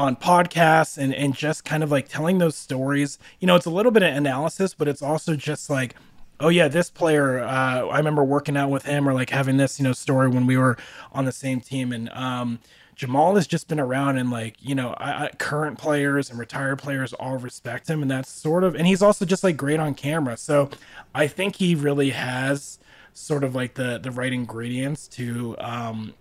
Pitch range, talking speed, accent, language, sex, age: 125-150 Hz, 220 wpm, American, English, male, 20-39